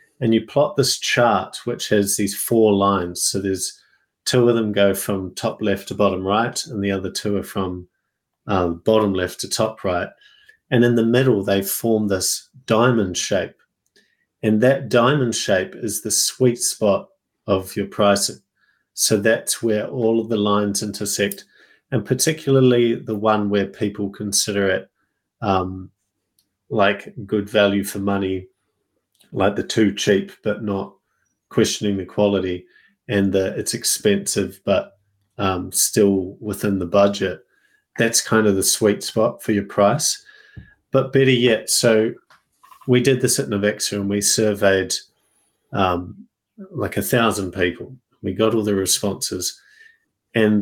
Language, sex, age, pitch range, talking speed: English, male, 40-59, 100-120 Hz, 150 wpm